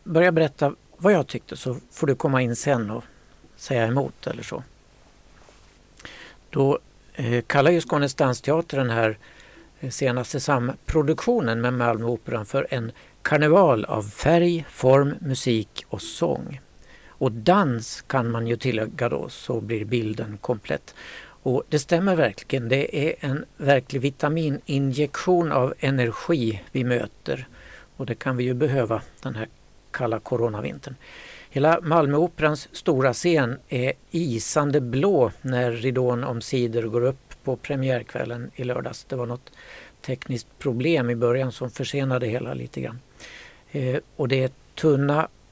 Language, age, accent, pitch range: Swedish, 60-79, native, 120-150 Hz